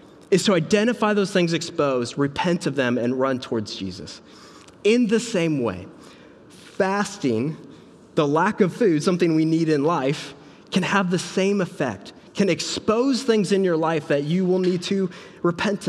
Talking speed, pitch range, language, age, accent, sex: 165 wpm, 125-190 Hz, English, 20-39, American, male